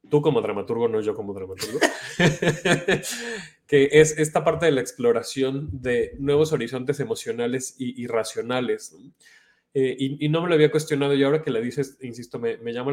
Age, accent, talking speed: 20-39, Mexican, 175 wpm